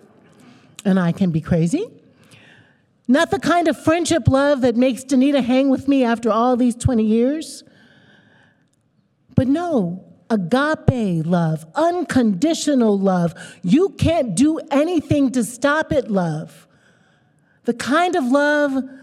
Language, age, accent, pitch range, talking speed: English, 50-69, American, 230-300 Hz, 125 wpm